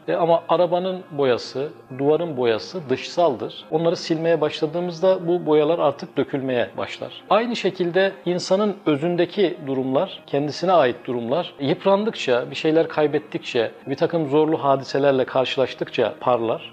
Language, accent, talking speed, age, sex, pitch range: Turkish, native, 115 wpm, 40-59, male, 140-185 Hz